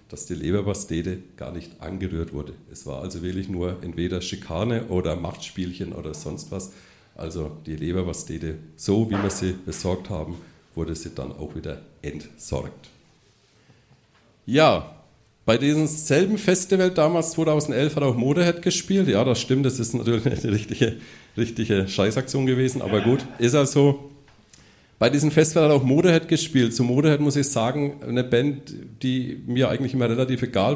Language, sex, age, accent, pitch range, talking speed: German, male, 50-69, German, 95-135 Hz, 160 wpm